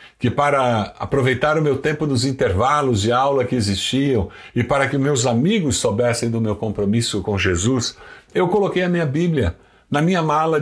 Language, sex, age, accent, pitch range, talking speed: Portuguese, male, 60-79, Brazilian, 105-150 Hz, 175 wpm